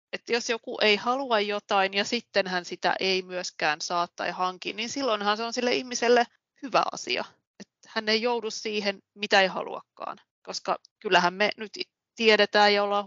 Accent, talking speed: native, 175 wpm